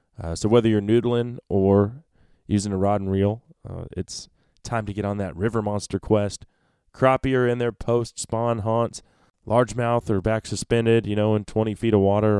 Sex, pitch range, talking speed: male, 95-120 Hz, 185 wpm